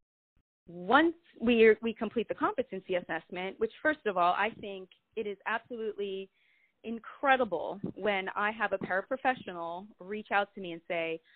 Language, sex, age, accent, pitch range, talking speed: English, female, 30-49, American, 185-235 Hz, 150 wpm